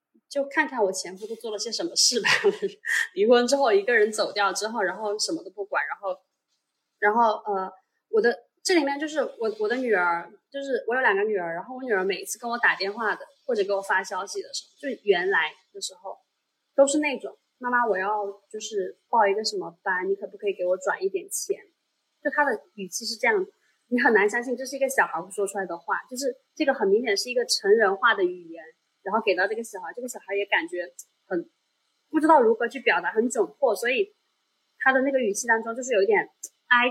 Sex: female